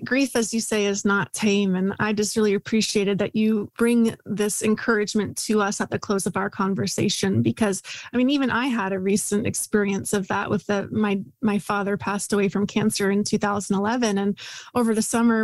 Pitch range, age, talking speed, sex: 205-240 Hz, 30-49, 200 wpm, female